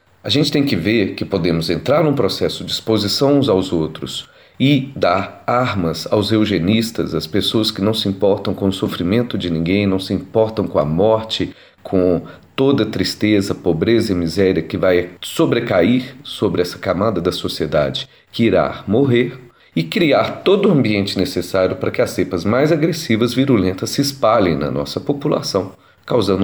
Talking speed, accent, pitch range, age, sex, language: 170 wpm, Brazilian, 95-130 Hz, 40-59, male, Portuguese